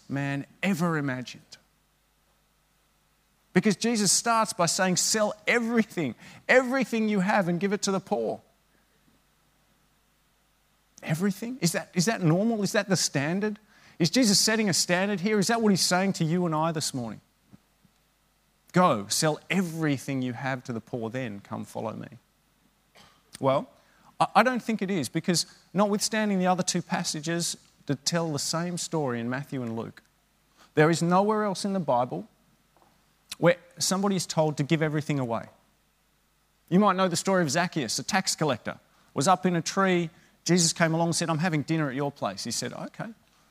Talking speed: 170 wpm